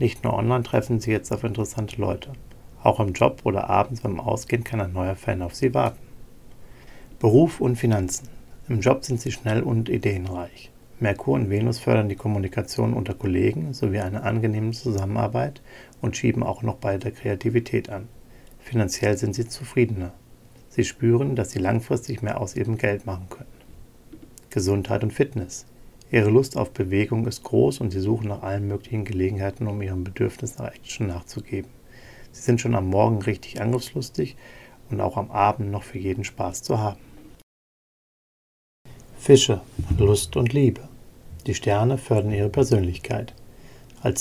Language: German